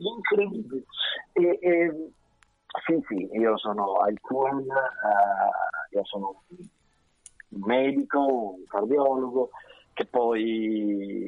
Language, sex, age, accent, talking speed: Italian, male, 50-69, native, 90 wpm